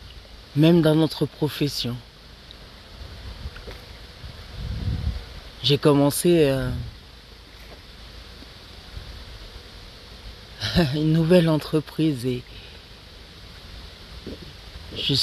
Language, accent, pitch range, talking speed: French, French, 85-140 Hz, 45 wpm